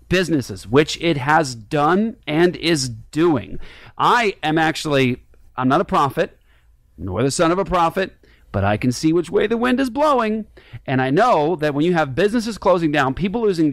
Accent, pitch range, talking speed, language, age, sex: American, 140-205 Hz, 190 wpm, English, 40-59, male